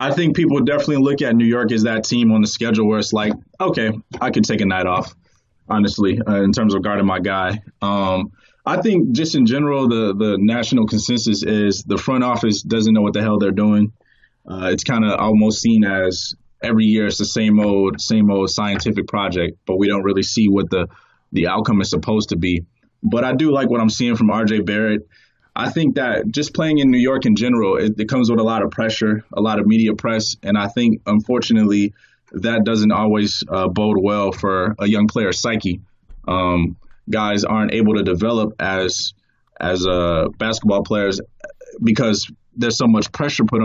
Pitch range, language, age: 100-110 Hz, English, 20-39